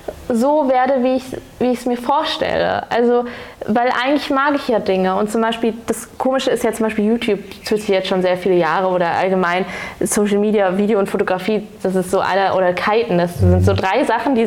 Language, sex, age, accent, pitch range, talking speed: German, female, 20-39, German, 200-245 Hz, 205 wpm